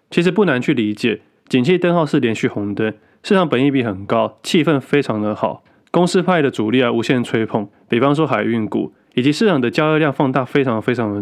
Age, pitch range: 20-39, 110-145 Hz